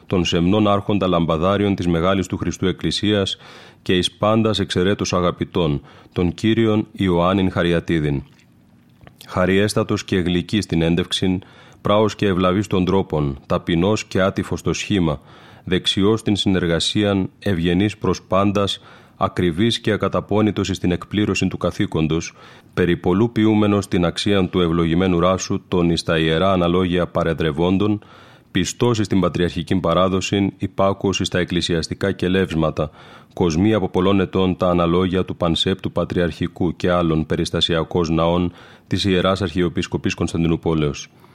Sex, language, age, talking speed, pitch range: male, Greek, 30-49, 120 wpm, 85-100 Hz